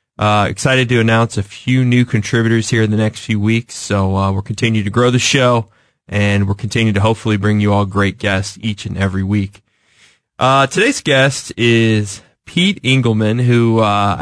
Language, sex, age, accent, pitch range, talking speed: English, male, 20-39, American, 105-120 Hz, 185 wpm